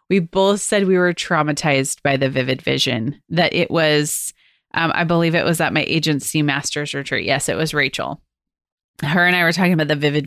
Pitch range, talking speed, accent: 160-205 Hz, 205 wpm, American